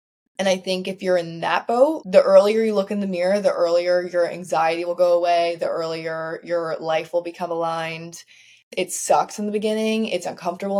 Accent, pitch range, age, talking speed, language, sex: American, 165-195 Hz, 20-39, 200 wpm, English, female